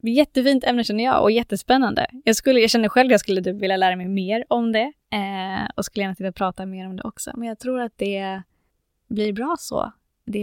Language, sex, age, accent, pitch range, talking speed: Swedish, female, 20-39, native, 190-230 Hz, 225 wpm